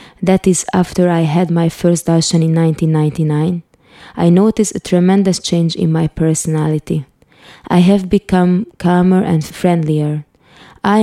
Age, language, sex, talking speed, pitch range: 20-39, English, female, 135 wpm, 165-190 Hz